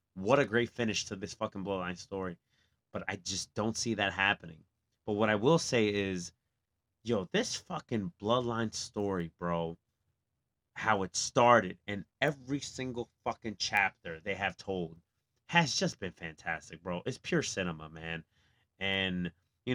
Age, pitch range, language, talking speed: 30-49, 95-125 Hz, English, 150 wpm